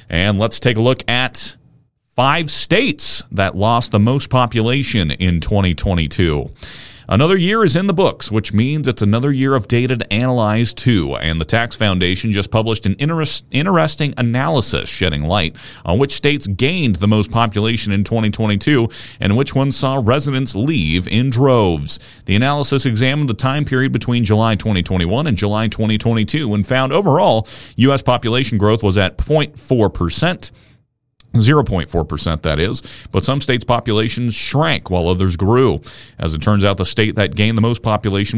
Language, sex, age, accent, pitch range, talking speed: English, male, 40-59, American, 100-130 Hz, 160 wpm